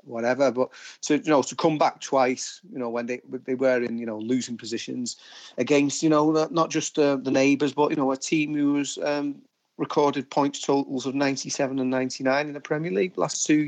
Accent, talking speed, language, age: British, 230 wpm, English, 30-49